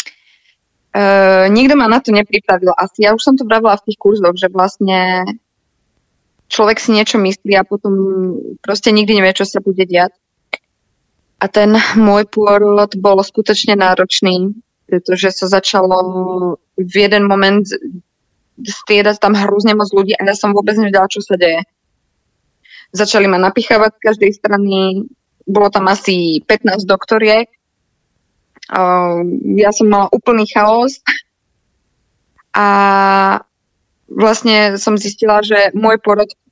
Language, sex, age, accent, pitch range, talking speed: Czech, female, 20-39, native, 195-215 Hz, 135 wpm